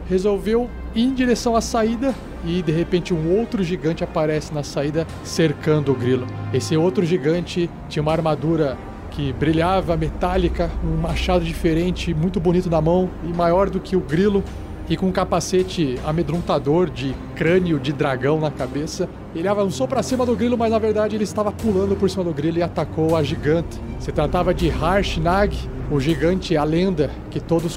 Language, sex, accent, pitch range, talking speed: Portuguese, male, Brazilian, 145-185 Hz, 175 wpm